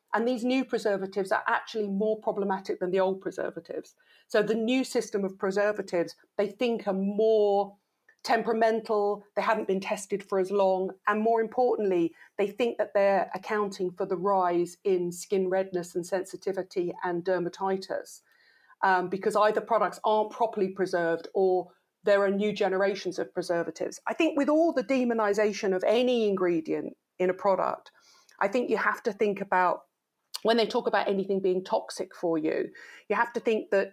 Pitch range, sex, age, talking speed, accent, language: 185-220 Hz, female, 40-59, 170 wpm, British, English